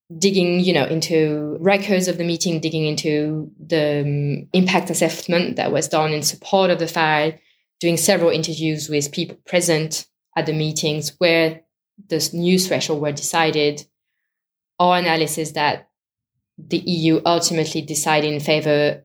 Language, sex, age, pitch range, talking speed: English, female, 20-39, 150-170 Hz, 145 wpm